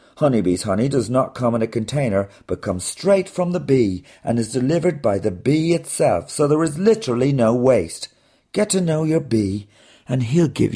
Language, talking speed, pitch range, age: English, 195 wpm, 100-125 Hz, 50-69